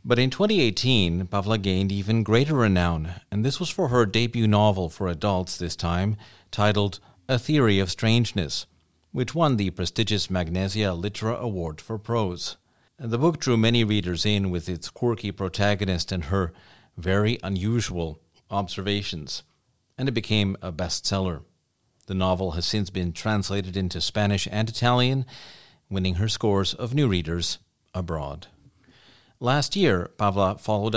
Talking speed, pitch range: 145 wpm, 90-120 Hz